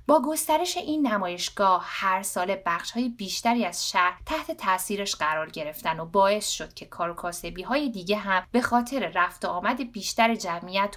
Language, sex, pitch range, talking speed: Persian, female, 180-240 Hz, 155 wpm